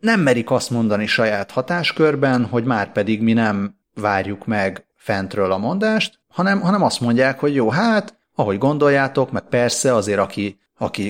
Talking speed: 160 wpm